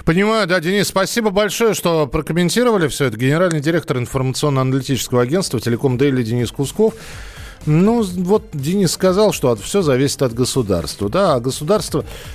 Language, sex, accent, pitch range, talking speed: Russian, male, native, 120-170 Hz, 130 wpm